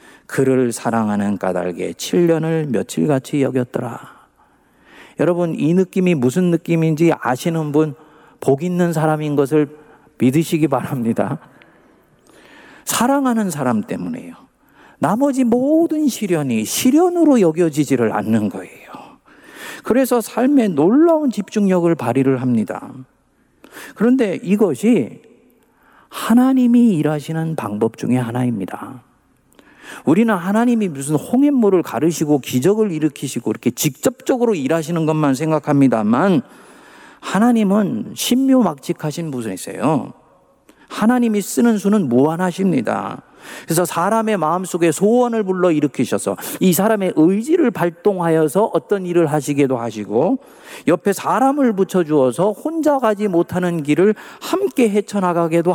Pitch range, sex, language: 150-225 Hz, male, Korean